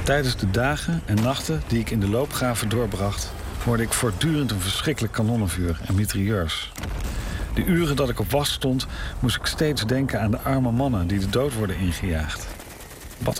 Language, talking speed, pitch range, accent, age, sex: Dutch, 180 wpm, 90-125 Hz, Dutch, 50-69, male